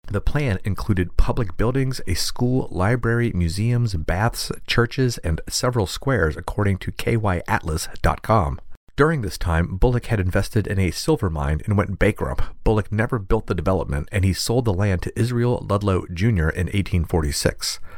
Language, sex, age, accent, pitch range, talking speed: English, male, 40-59, American, 85-115 Hz, 155 wpm